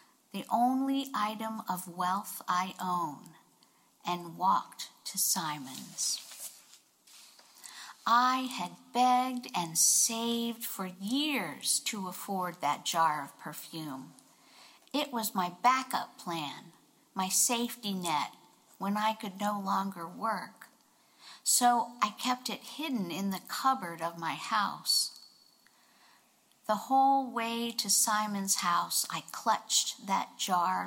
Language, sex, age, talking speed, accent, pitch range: English, female, 50-69, 115 wpm, American, 180-240 Hz